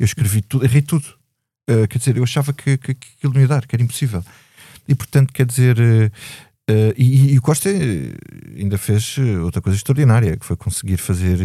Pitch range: 100-135 Hz